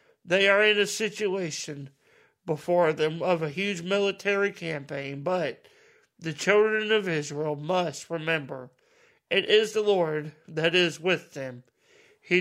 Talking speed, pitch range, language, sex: 135 wpm, 150-195 Hz, English, male